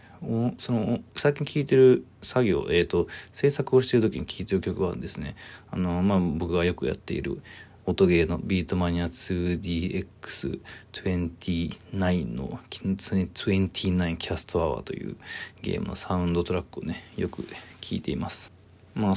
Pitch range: 90-100 Hz